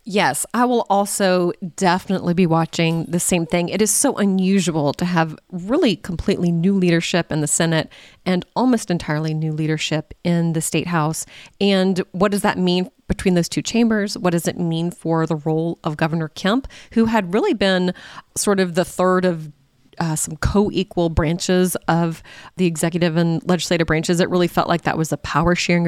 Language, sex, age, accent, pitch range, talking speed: English, female, 30-49, American, 165-195 Hz, 180 wpm